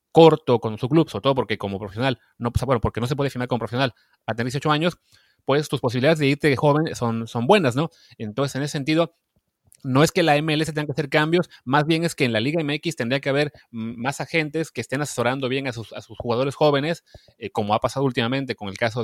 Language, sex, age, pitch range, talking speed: Spanish, male, 30-49, 110-145 Hz, 245 wpm